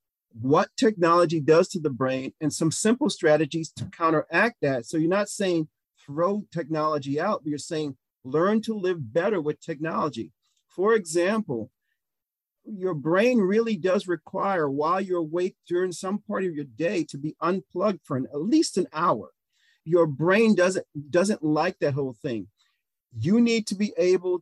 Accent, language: American, English